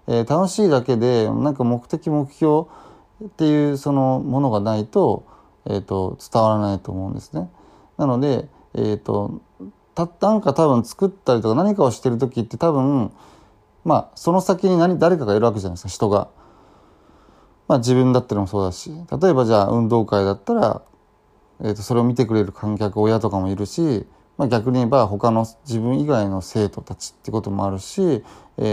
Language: Japanese